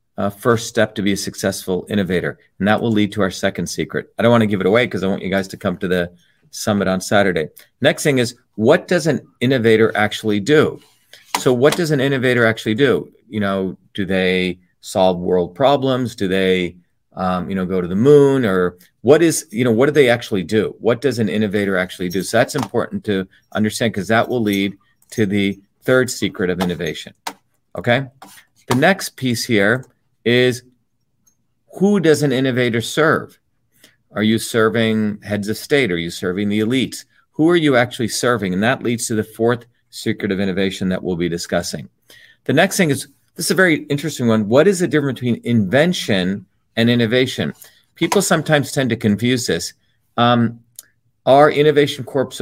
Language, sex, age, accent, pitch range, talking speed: English, male, 40-59, American, 100-125 Hz, 190 wpm